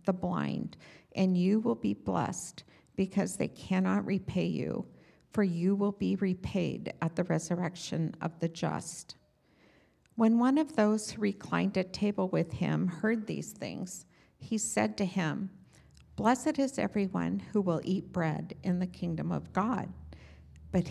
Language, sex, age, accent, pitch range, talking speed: English, female, 50-69, American, 170-205 Hz, 150 wpm